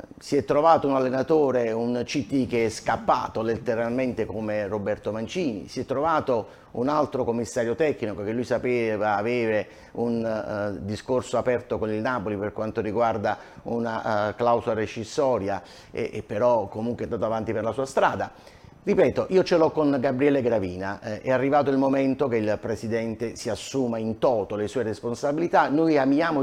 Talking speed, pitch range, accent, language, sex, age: 165 wpm, 115-155 Hz, native, Italian, male, 30-49